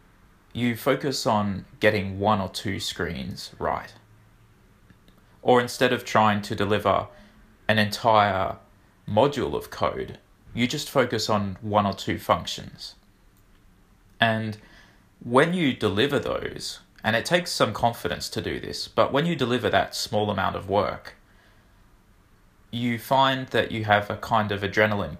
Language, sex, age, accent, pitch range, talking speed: English, male, 20-39, Australian, 100-120 Hz, 140 wpm